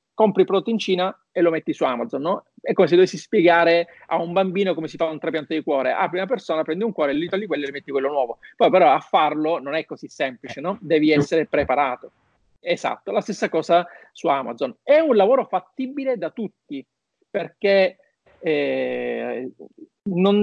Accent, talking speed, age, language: native, 195 wpm, 40-59, Italian